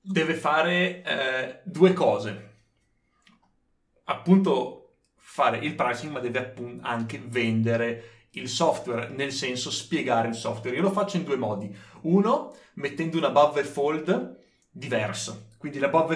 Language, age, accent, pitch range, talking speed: Italian, 30-49, native, 115-155 Hz, 135 wpm